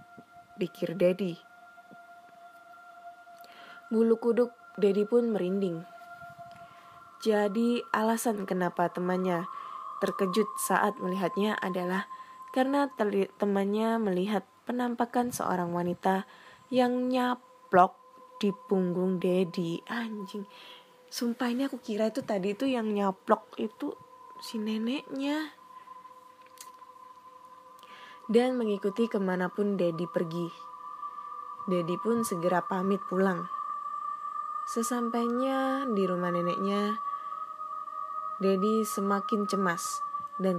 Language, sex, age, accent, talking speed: Indonesian, female, 20-39, native, 85 wpm